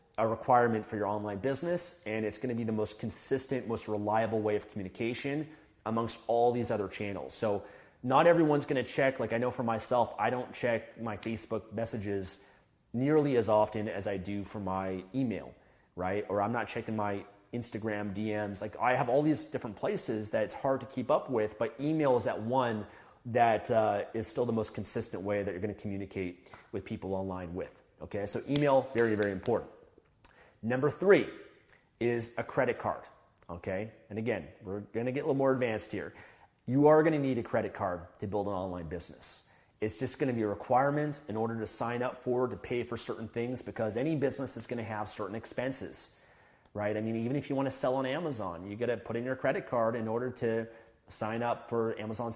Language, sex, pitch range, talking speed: English, male, 105-125 Hz, 210 wpm